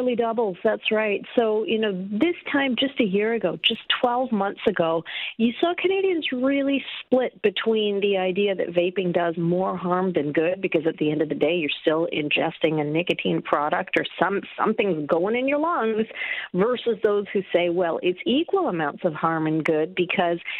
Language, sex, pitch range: English, female, 170-235 Hz